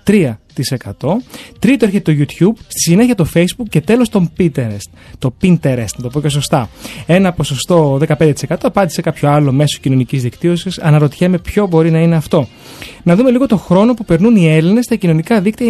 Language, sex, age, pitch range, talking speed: Greek, male, 30-49, 140-190 Hz, 180 wpm